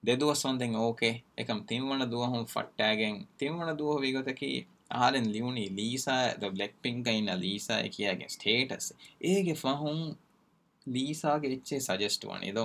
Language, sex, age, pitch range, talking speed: Urdu, male, 20-39, 100-135 Hz, 175 wpm